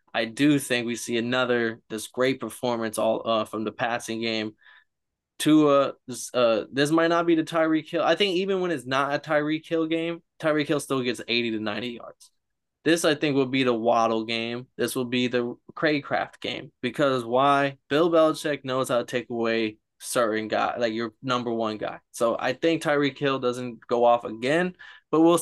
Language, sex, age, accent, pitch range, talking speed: English, male, 20-39, American, 120-155 Hz, 205 wpm